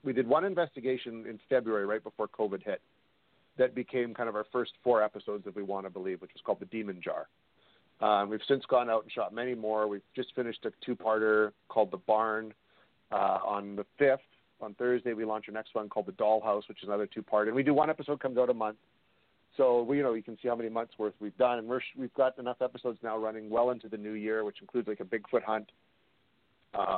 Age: 40-59